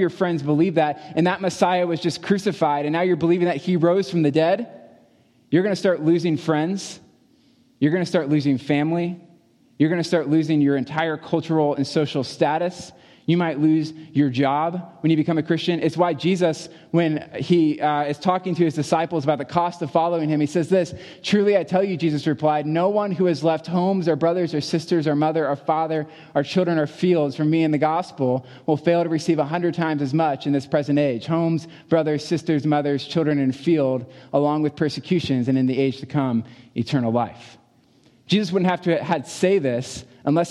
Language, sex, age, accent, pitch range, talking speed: English, male, 20-39, American, 140-170 Hz, 210 wpm